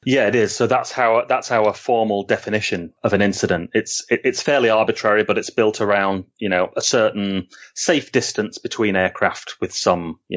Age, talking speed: 30-49, 195 wpm